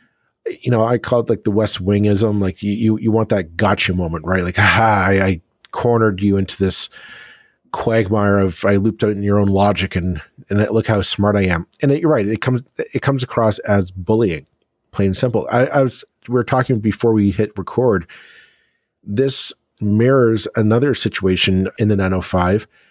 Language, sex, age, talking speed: English, male, 40-59, 190 wpm